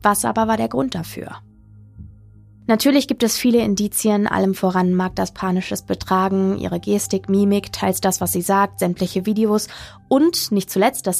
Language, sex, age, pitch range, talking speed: German, female, 20-39, 170-205 Hz, 160 wpm